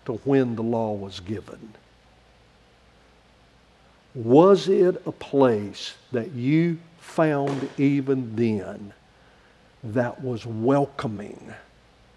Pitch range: 115-145 Hz